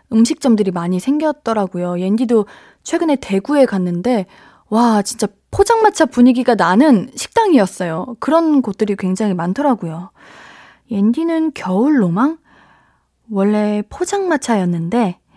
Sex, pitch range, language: female, 195-280 Hz, Korean